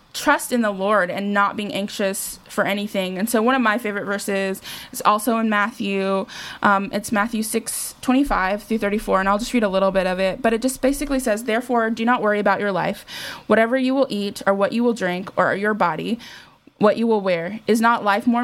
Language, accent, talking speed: English, American, 225 wpm